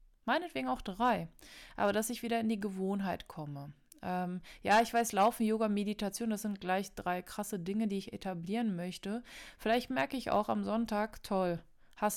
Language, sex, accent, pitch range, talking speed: German, female, German, 185-225 Hz, 180 wpm